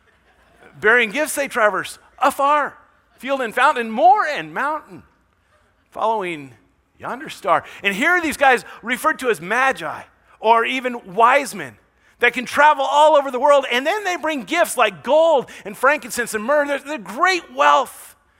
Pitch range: 180-255 Hz